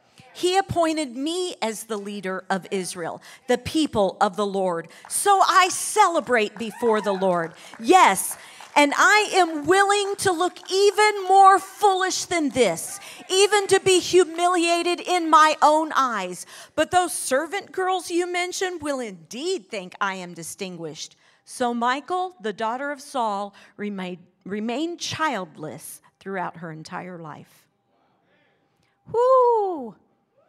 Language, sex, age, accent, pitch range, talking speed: English, female, 40-59, American, 195-330 Hz, 125 wpm